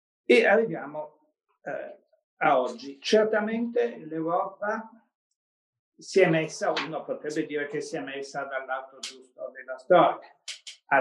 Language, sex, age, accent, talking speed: Italian, male, 50-69, native, 120 wpm